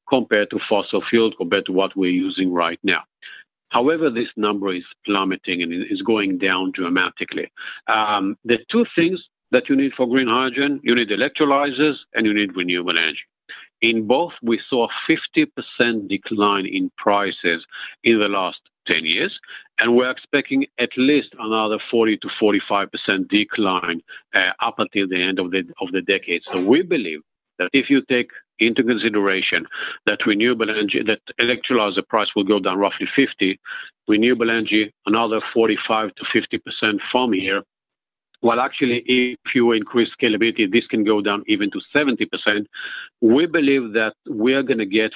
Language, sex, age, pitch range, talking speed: English, male, 50-69, 100-130 Hz, 160 wpm